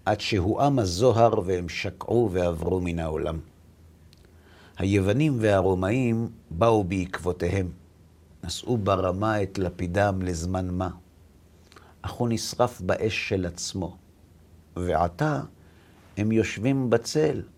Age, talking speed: 50-69, 95 wpm